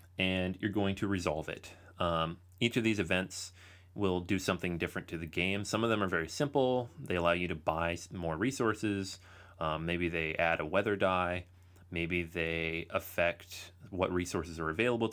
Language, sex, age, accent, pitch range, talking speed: English, male, 30-49, American, 85-100 Hz, 180 wpm